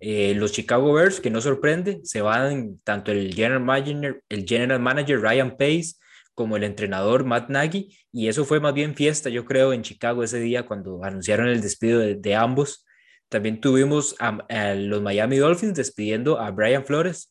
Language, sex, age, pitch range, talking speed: Spanish, male, 20-39, 105-135 Hz, 185 wpm